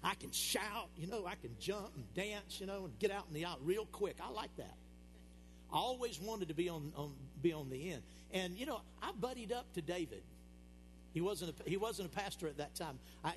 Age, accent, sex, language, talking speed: 50-69, American, male, English, 240 wpm